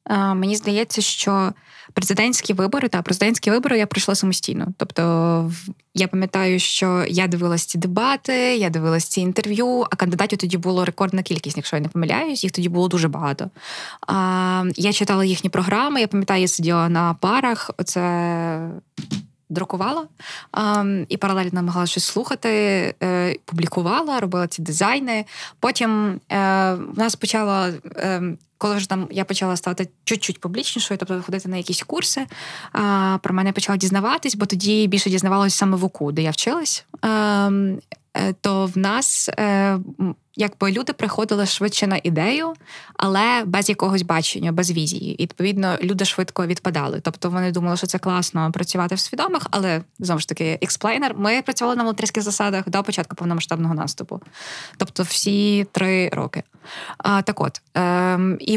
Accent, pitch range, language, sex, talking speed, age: native, 180-210 Hz, Ukrainian, female, 150 wpm, 20-39